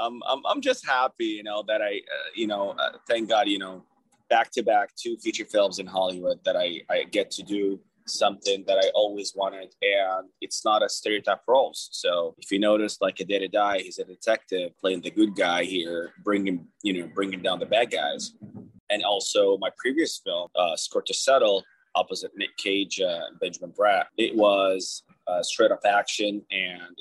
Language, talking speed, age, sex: English, 200 wpm, 20-39, male